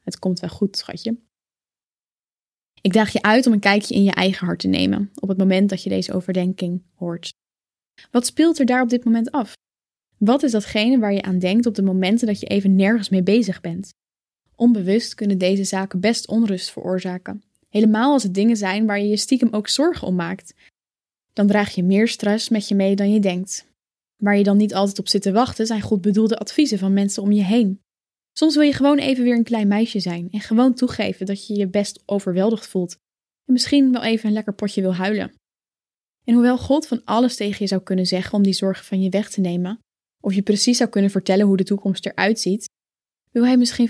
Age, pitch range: 10-29, 195-230 Hz